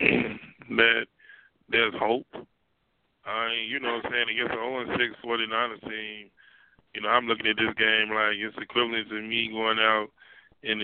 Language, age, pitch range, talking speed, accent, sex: English, 20-39, 110-120 Hz, 155 wpm, American, male